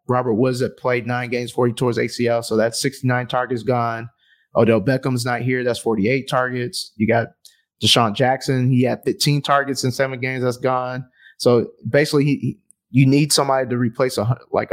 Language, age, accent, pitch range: English, 20-39, American, 125-140 Hz